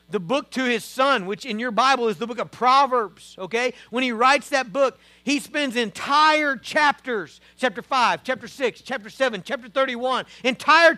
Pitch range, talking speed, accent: 235-295 Hz, 180 wpm, American